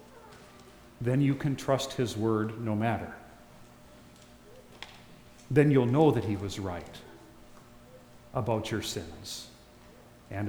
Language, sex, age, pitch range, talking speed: English, male, 40-59, 110-140 Hz, 110 wpm